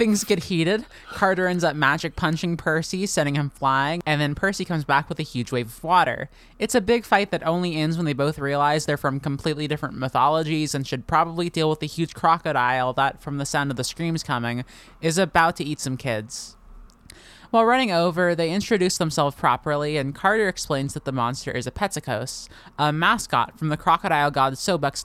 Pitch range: 135-175 Hz